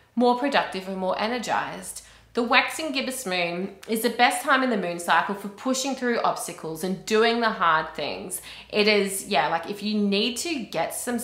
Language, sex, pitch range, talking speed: English, female, 175-230 Hz, 190 wpm